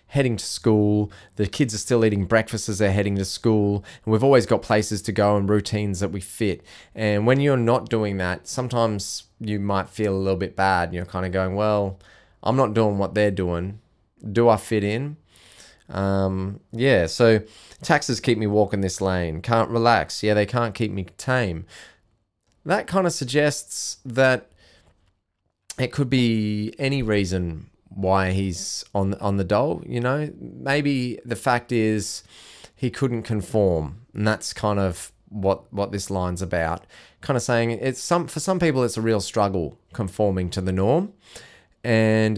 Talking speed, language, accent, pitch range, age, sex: 175 wpm, English, Australian, 95-120 Hz, 20-39, male